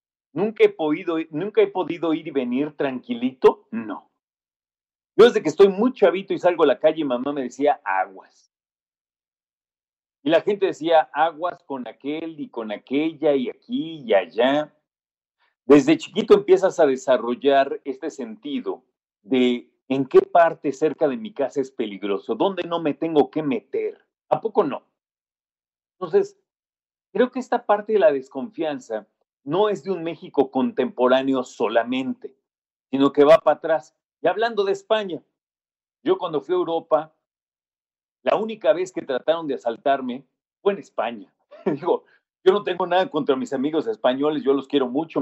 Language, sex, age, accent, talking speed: Spanish, male, 40-59, Mexican, 155 wpm